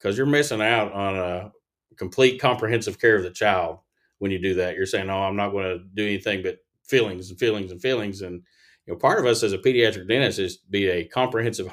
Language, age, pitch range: English, 40-59, 95-110 Hz